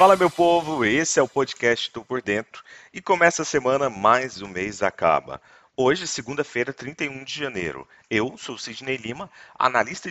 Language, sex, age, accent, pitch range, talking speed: Portuguese, male, 40-59, Brazilian, 100-145 Hz, 165 wpm